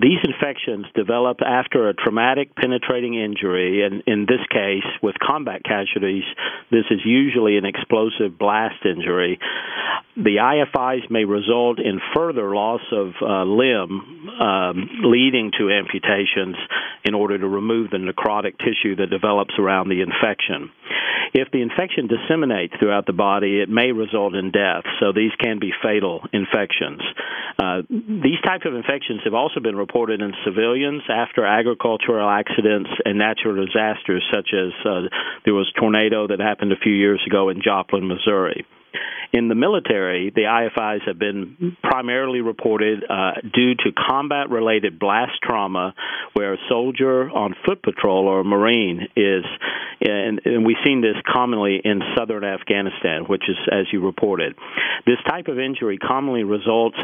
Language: English